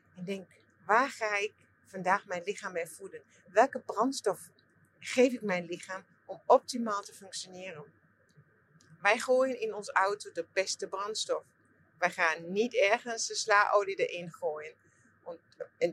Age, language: 40-59, English